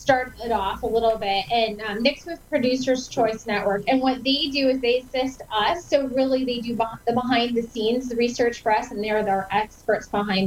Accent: American